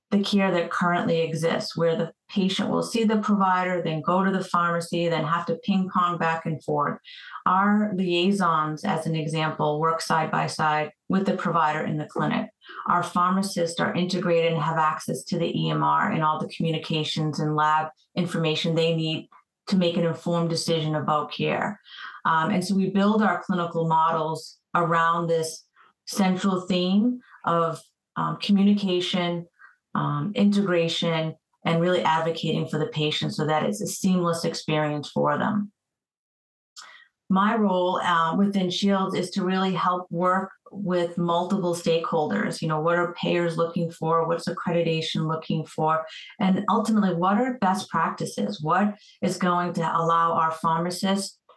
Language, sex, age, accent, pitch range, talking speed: English, female, 30-49, American, 165-190 Hz, 155 wpm